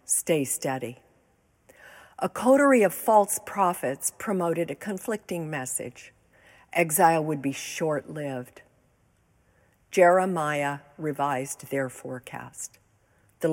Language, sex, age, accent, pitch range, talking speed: English, female, 50-69, American, 135-190 Hz, 90 wpm